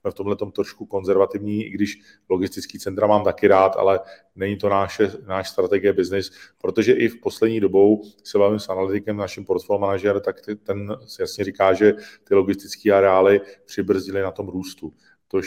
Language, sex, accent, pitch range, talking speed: Czech, male, native, 95-105 Hz, 175 wpm